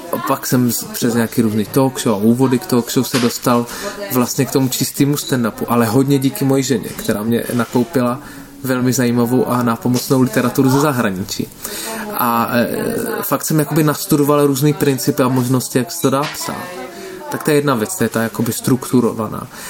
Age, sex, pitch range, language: 20-39, male, 120-135 Hz, Slovak